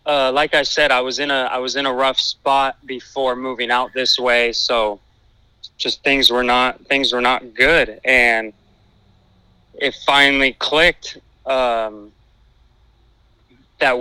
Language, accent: English, American